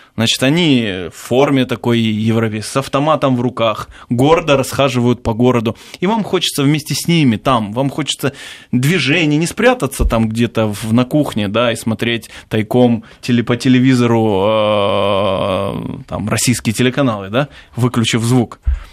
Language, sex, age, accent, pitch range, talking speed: Russian, male, 20-39, native, 115-150 Hz, 130 wpm